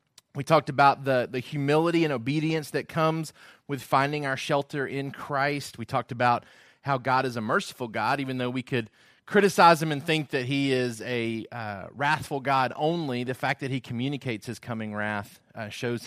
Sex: male